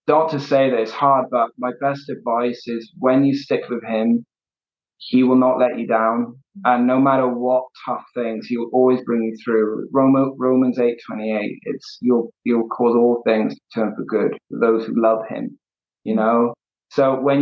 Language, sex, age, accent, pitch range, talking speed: English, male, 20-39, British, 115-130 Hz, 195 wpm